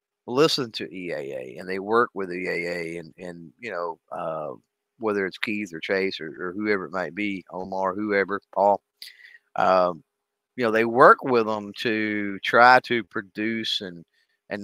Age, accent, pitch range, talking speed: 50-69, American, 95-110 Hz, 165 wpm